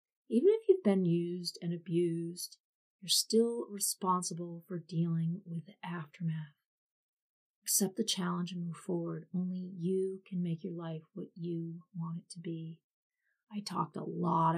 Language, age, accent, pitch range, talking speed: English, 30-49, American, 170-205 Hz, 150 wpm